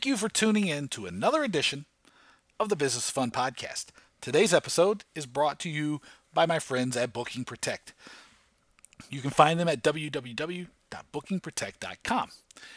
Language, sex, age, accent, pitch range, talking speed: English, male, 50-69, American, 125-185 Hz, 145 wpm